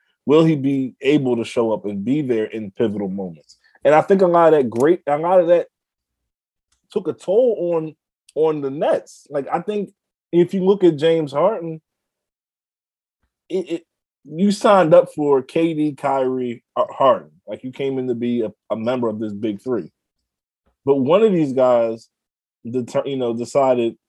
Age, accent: 20-39, American